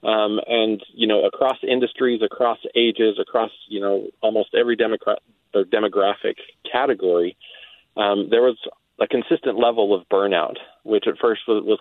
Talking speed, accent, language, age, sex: 140 wpm, American, English, 30-49, male